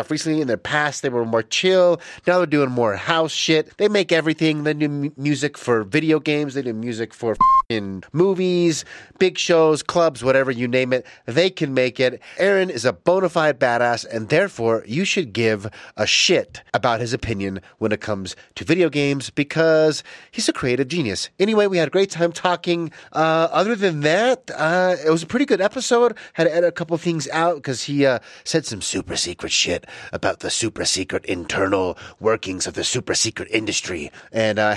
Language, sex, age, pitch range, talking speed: English, male, 30-49, 125-170 Hz, 195 wpm